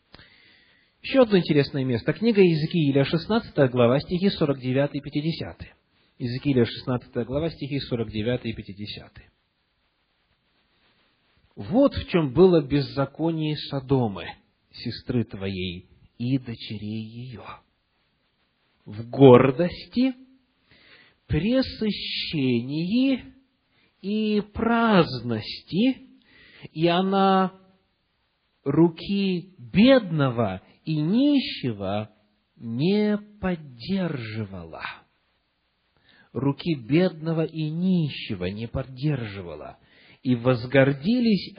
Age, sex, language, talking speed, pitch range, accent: 40-59, male, Russian, 75 wpm, 120-180 Hz, native